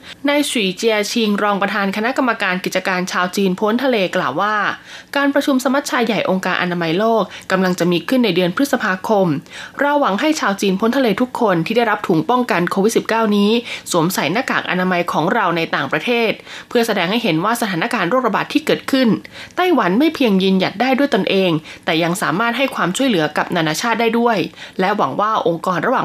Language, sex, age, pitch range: Thai, female, 20-39, 180-235 Hz